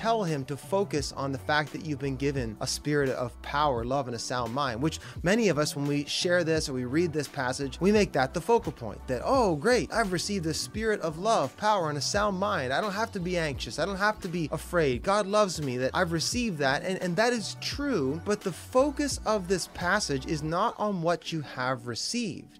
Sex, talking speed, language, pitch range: male, 240 wpm, English, 145-205 Hz